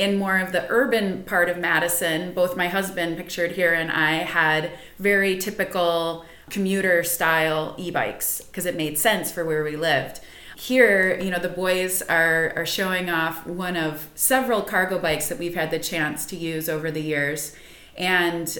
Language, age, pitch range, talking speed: English, 30-49, 165-200 Hz, 175 wpm